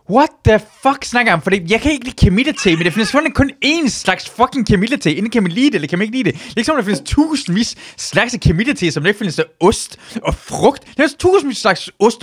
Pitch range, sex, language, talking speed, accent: 185-280 Hz, male, Danish, 270 wpm, native